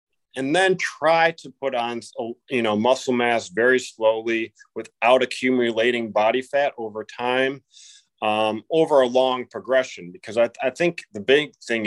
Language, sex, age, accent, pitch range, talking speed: English, male, 30-49, American, 105-140 Hz, 150 wpm